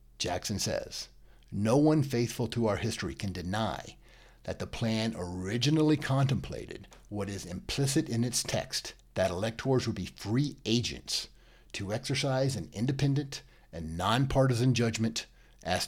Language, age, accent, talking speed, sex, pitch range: English, 50-69, American, 130 wpm, male, 100-130 Hz